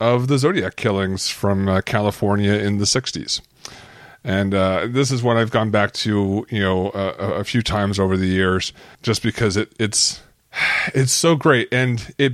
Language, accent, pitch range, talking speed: English, American, 100-125 Hz, 180 wpm